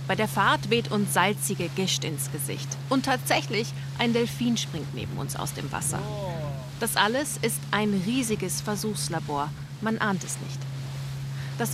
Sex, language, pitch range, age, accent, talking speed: female, German, 180-240 Hz, 30-49, German, 155 wpm